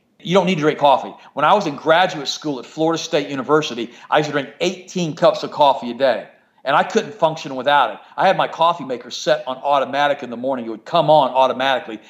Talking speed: 240 wpm